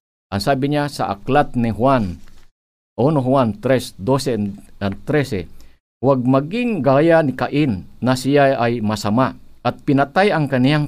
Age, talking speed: 50-69, 120 wpm